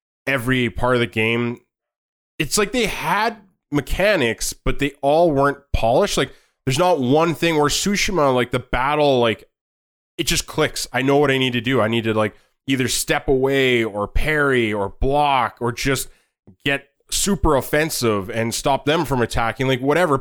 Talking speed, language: 175 wpm, English